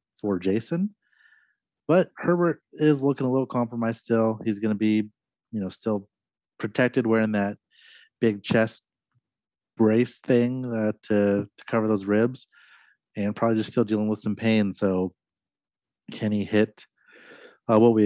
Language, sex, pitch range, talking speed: English, male, 100-120 Hz, 155 wpm